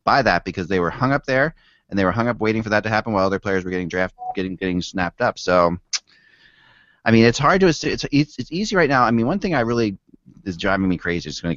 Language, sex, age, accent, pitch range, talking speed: English, male, 30-49, American, 90-120 Hz, 275 wpm